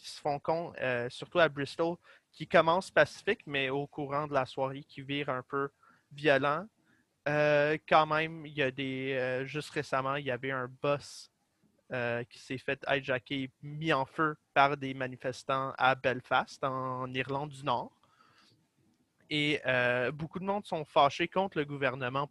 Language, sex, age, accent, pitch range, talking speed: French, male, 20-39, Canadian, 130-150 Hz, 170 wpm